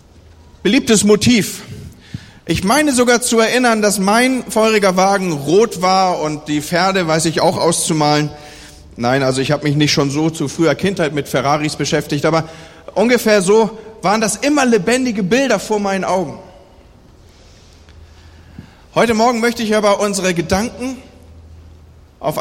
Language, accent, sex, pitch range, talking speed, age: German, German, male, 145-225 Hz, 140 wpm, 40-59